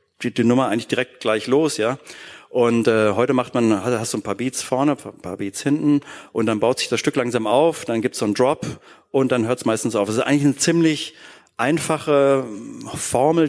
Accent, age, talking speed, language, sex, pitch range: German, 40-59, 230 wpm, German, male, 115-140 Hz